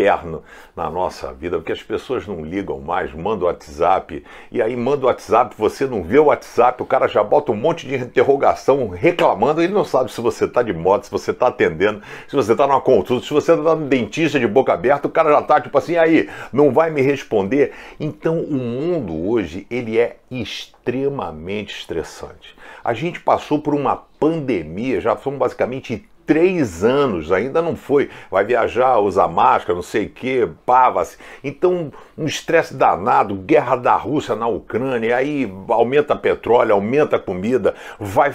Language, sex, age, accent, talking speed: Portuguese, male, 60-79, Brazilian, 185 wpm